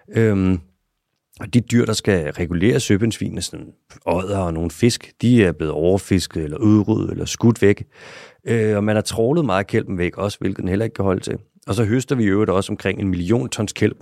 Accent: native